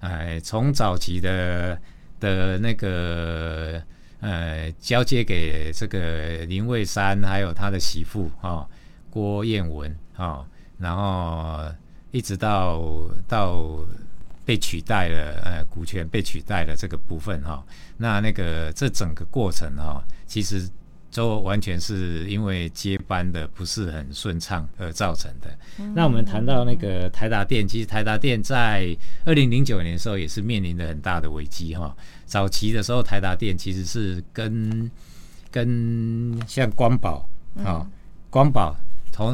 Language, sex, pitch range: Chinese, male, 85-110 Hz